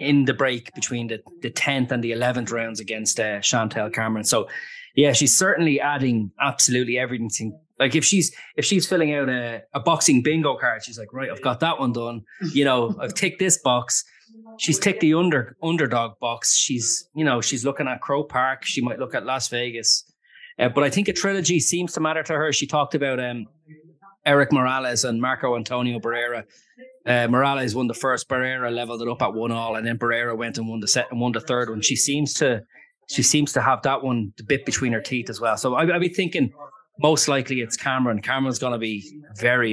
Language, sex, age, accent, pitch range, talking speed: English, male, 20-39, Irish, 120-155 Hz, 215 wpm